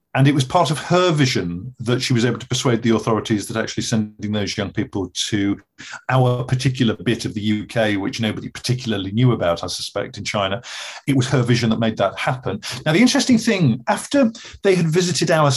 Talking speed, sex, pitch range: 210 wpm, male, 115-155 Hz